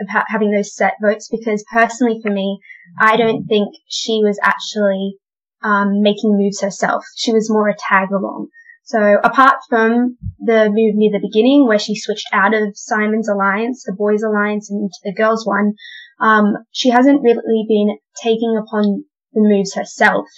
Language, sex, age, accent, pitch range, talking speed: English, female, 20-39, Australian, 200-225 Hz, 170 wpm